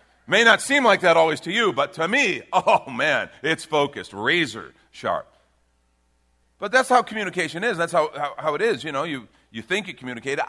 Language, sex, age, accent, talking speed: English, male, 40-59, American, 200 wpm